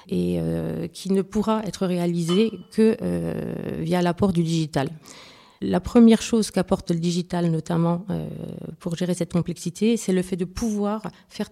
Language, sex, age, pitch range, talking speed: French, female, 30-49, 170-195 Hz, 160 wpm